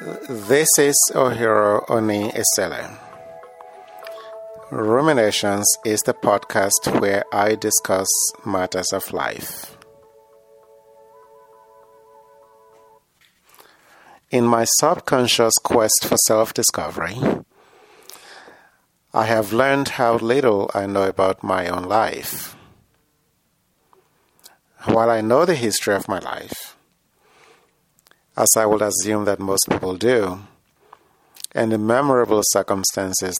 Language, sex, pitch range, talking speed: English, male, 95-115 Hz, 95 wpm